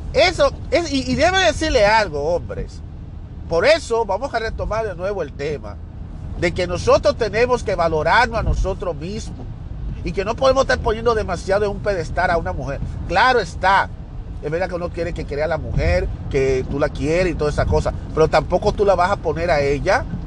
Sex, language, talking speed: male, Spanish, 200 wpm